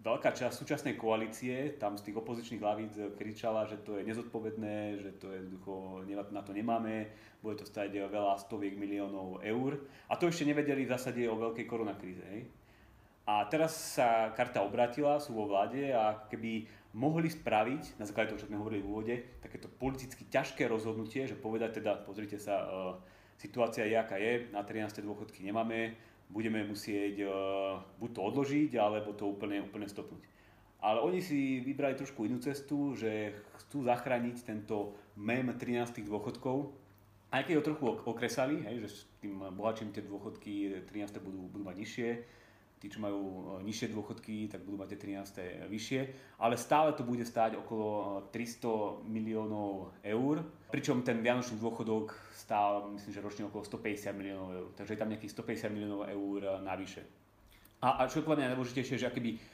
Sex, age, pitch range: male, 30-49, 100-120 Hz